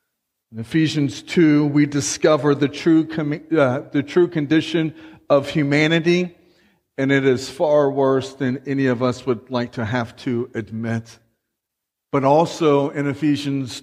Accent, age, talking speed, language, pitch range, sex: American, 50-69, 130 wpm, English, 130-165 Hz, male